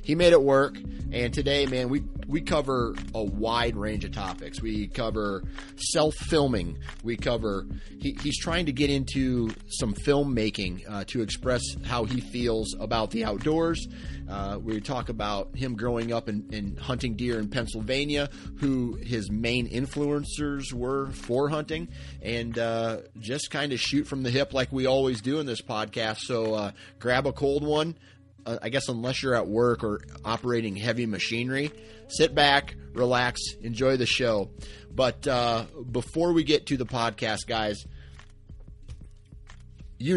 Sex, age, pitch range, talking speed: male, 30-49, 105-130 Hz, 160 wpm